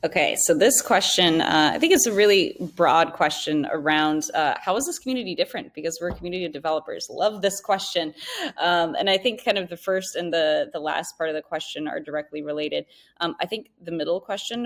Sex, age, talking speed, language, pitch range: female, 20-39, 215 wpm, English, 155-200 Hz